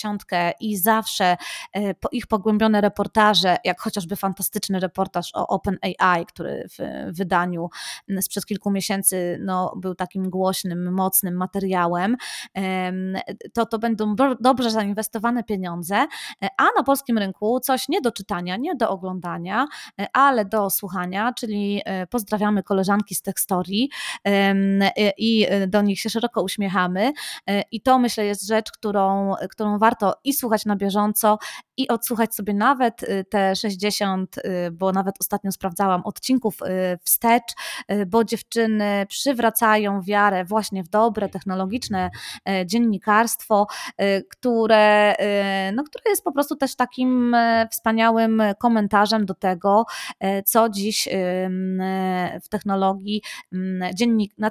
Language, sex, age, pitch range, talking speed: Polish, female, 20-39, 190-225 Hz, 110 wpm